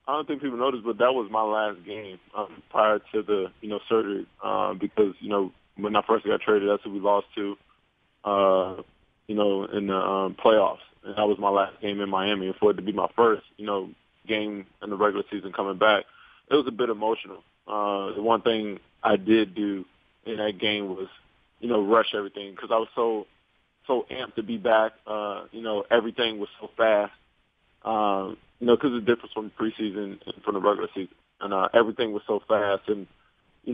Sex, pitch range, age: male, 100-115 Hz, 20-39